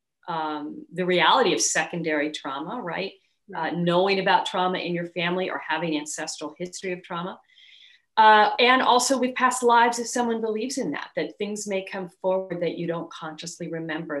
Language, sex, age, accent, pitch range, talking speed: English, female, 40-59, American, 170-245 Hz, 175 wpm